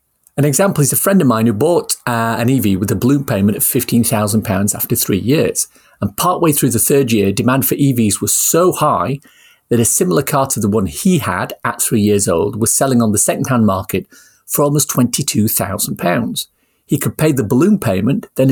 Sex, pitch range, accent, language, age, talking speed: male, 105-140 Hz, British, English, 40-59, 200 wpm